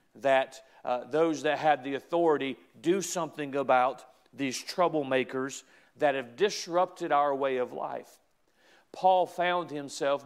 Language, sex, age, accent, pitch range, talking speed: English, male, 50-69, American, 130-155 Hz, 130 wpm